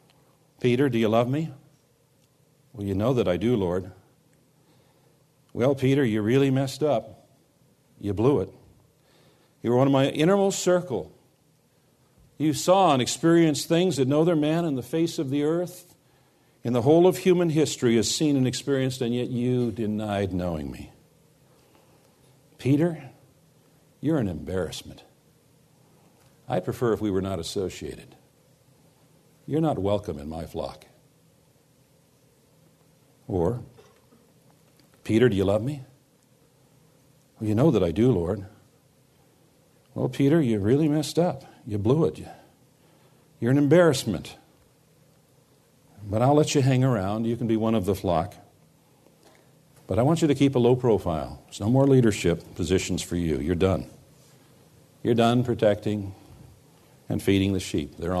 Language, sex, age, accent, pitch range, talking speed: English, male, 60-79, American, 115-150 Hz, 145 wpm